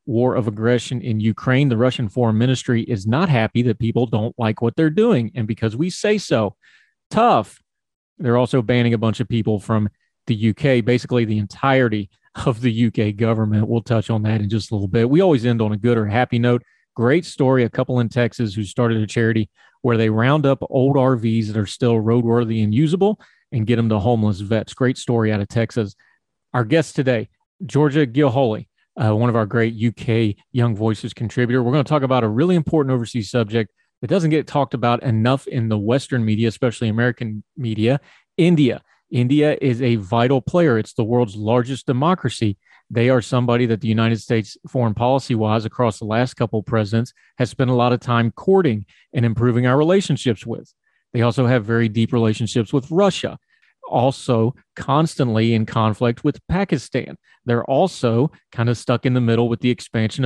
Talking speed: 195 wpm